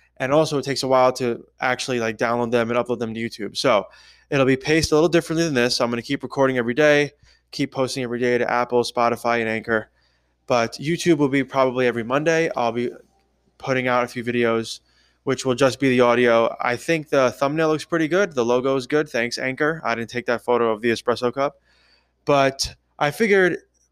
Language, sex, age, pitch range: English, male, 20-39, 120-145 Hz